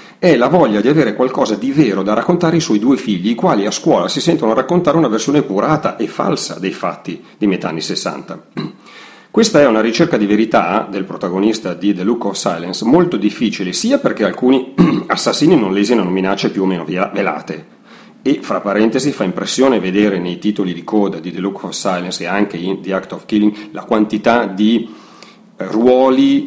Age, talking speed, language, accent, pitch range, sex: 40-59, 190 wpm, Italian, native, 95-135 Hz, male